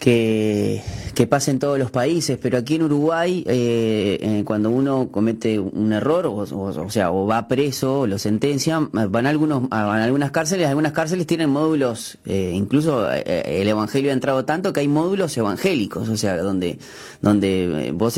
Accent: Argentinian